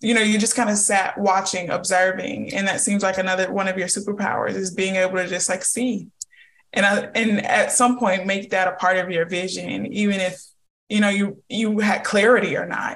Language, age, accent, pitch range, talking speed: English, 20-39, American, 185-215 Hz, 220 wpm